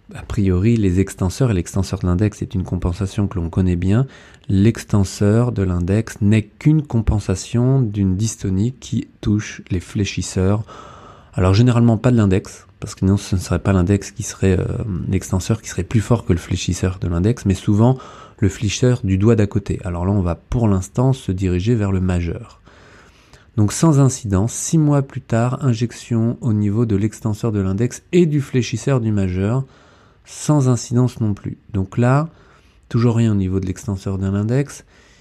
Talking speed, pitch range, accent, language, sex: 180 wpm, 95-120 Hz, French, French, male